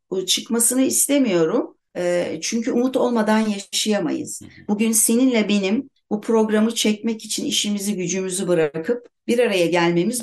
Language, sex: Turkish, female